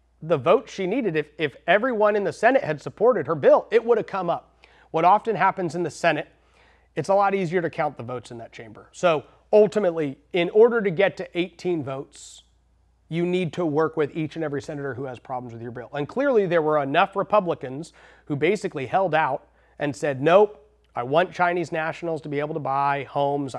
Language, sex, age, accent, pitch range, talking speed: English, male, 30-49, American, 145-205 Hz, 210 wpm